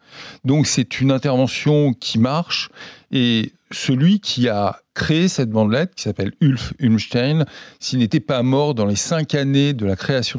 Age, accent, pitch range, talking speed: 50-69, French, 110-155 Hz, 160 wpm